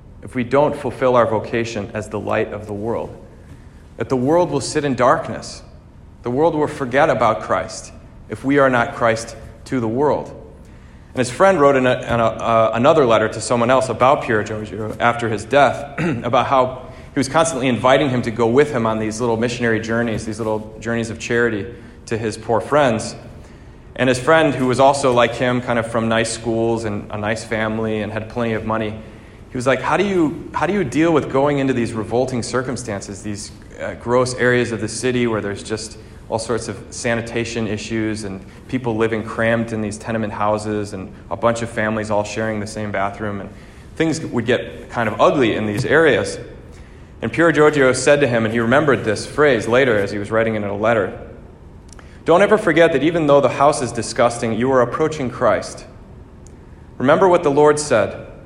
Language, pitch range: English, 110-130 Hz